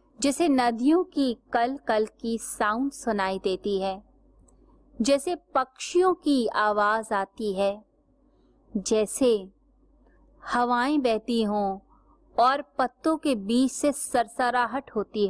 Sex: female